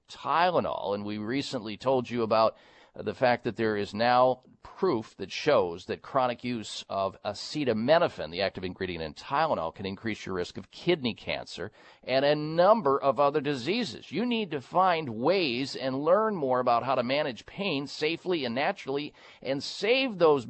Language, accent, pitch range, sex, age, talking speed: English, American, 125-185 Hz, male, 50-69, 170 wpm